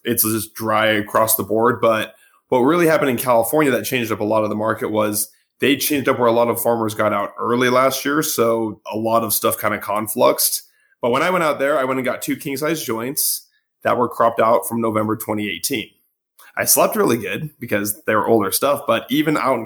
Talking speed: 230 wpm